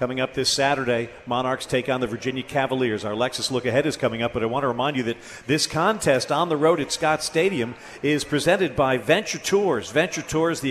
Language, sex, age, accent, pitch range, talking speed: English, male, 50-69, American, 135-180 Hz, 225 wpm